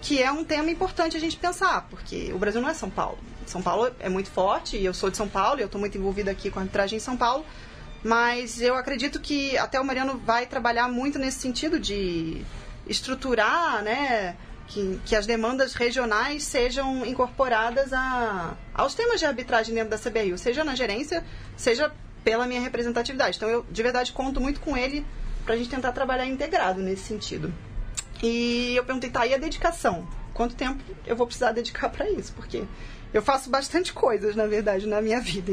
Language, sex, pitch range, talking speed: Portuguese, female, 215-280 Hz, 195 wpm